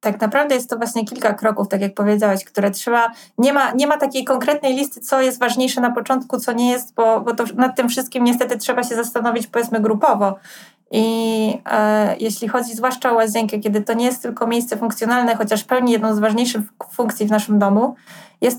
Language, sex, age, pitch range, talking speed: Polish, female, 20-39, 210-245 Hz, 205 wpm